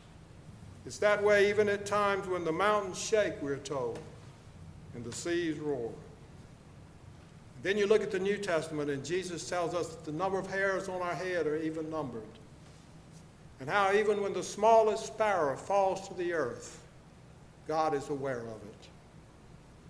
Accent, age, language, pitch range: American, 60-79, English, 150-195 Hz